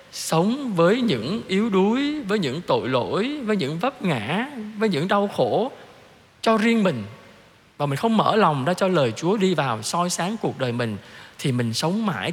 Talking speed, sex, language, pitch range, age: 195 wpm, male, Vietnamese, 135-205 Hz, 20-39